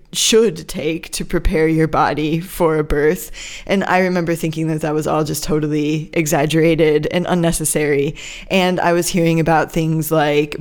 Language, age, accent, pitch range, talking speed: English, 20-39, American, 155-185 Hz, 165 wpm